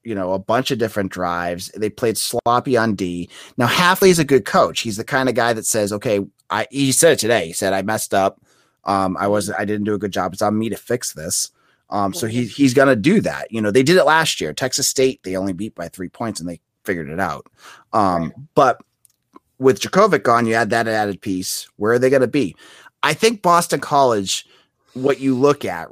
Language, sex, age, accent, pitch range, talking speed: English, male, 30-49, American, 100-135 Hz, 235 wpm